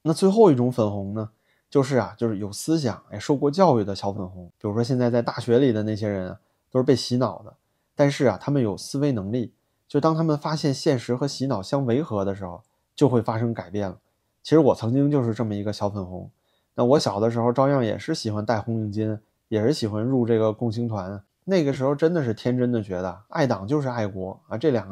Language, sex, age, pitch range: Chinese, male, 20-39, 110-140 Hz